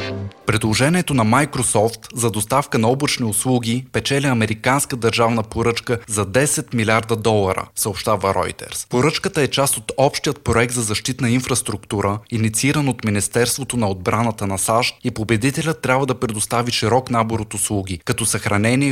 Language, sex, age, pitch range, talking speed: Bulgarian, male, 20-39, 110-130 Hz, 145 wpm